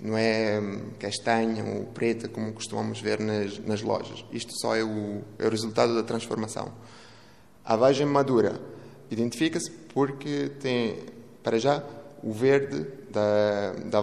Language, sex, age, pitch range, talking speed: Portuguese, male, 20-39, 110-125 Hz, 135 wpm